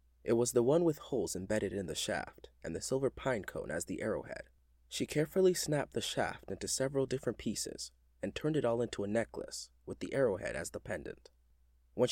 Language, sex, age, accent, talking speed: English, male, 20-39, American, 205 wpm